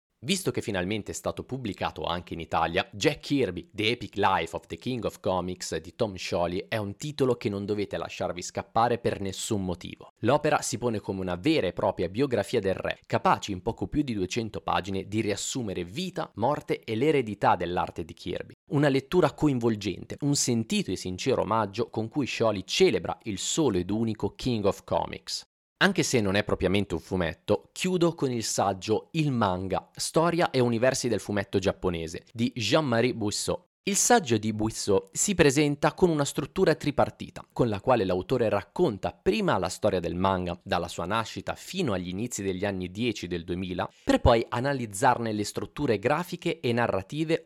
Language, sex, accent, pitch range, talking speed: Italian, male, native, 100-145 Hz, 175 wpm